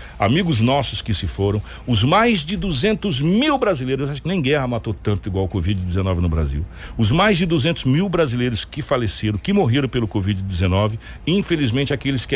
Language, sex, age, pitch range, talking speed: Portuguese, male, 60-79, 100-150 Hz, 180 wpm